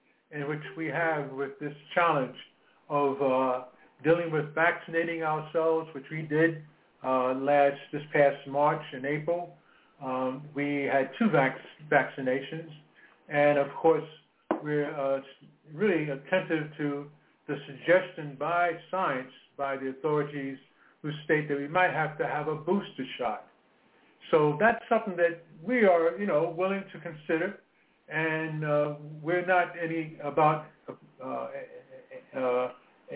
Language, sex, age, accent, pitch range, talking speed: English, male, 60-79, American, 140-170 Hz, 130 wpm